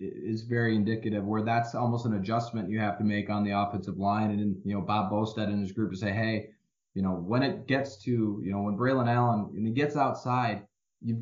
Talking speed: 230 wpm